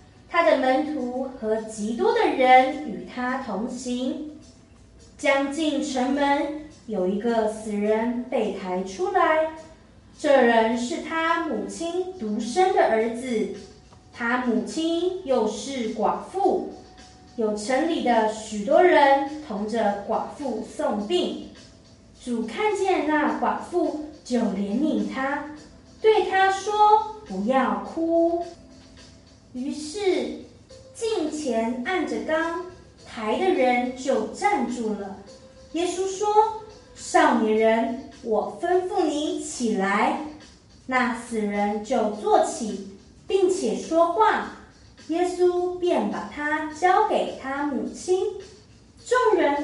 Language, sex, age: Chinese, female, 20-39